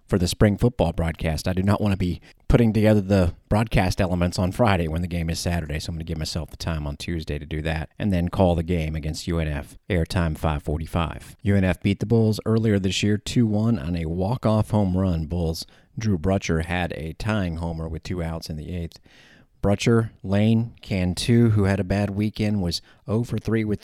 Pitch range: 85-110 Hz